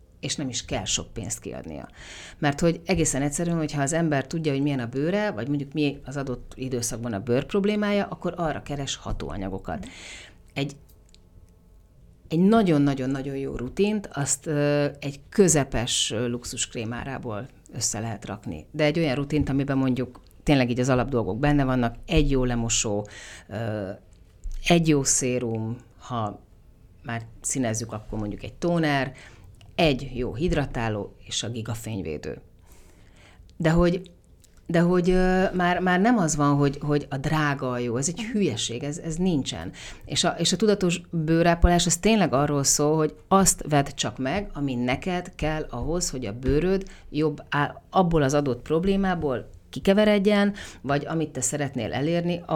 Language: Hungarian